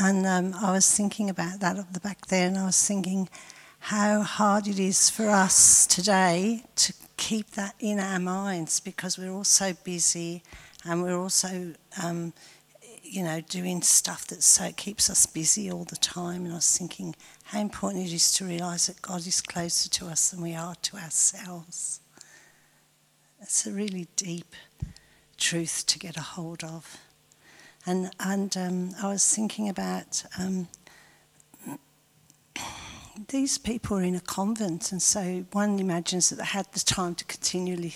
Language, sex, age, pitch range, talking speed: English, female, 50-69, 170-200 Hz, 165 wpm